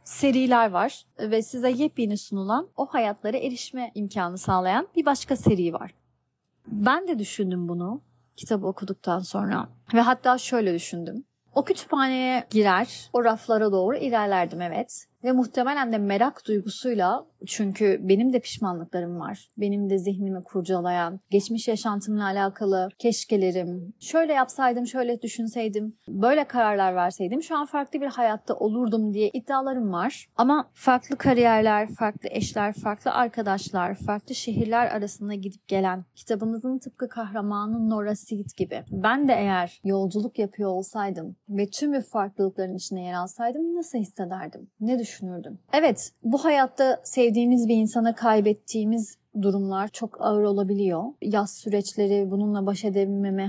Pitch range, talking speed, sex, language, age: 195-245 Hz, 135 wpm, female, Turkish, 30-49